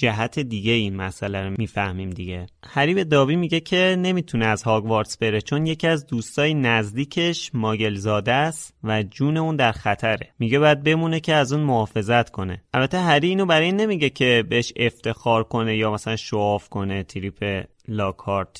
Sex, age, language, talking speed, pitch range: male, 30-49, Persian, 160 wpm, 110-150 Hz